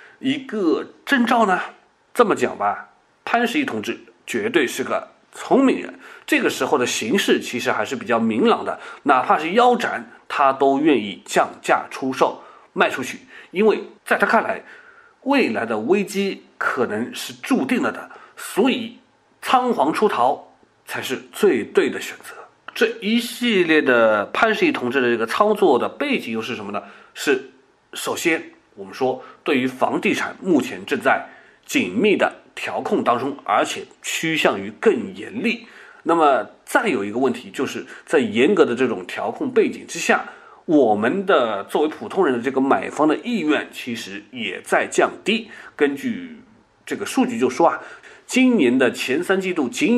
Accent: native